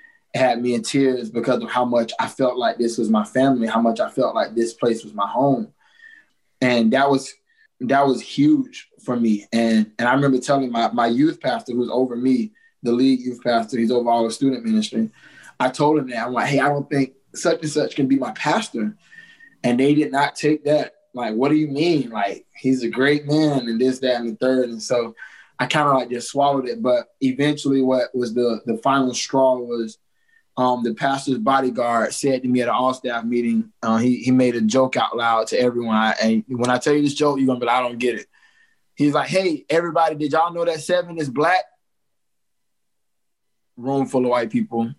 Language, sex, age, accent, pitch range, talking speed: English, male, 20-39, American, 120-150 Hz, 220 wpm